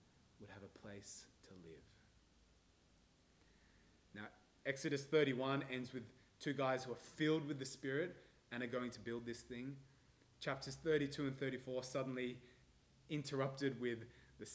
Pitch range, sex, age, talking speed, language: 100-130 Hz, male, 20-39, 140 wpm, English